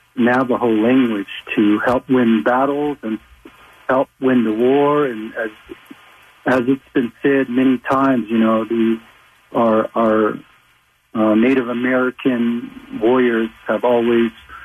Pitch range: 115-130 Hz